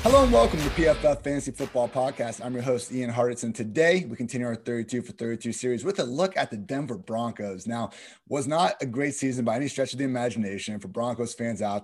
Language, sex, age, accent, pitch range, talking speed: English, male, 30-49, American, 115-135 Hz, 225 wpm